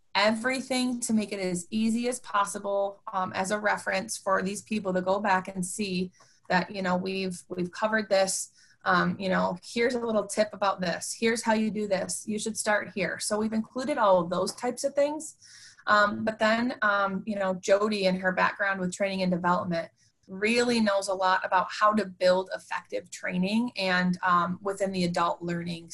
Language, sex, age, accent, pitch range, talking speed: English, female, 20-39, American, 180-205 Hz, 195 wpm